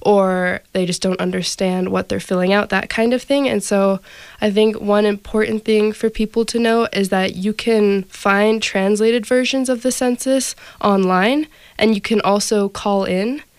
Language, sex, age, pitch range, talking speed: English, female, 10-29, 195-220 Hz, 180 wpm